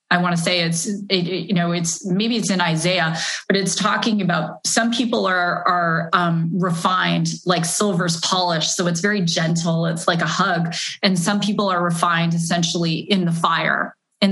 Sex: female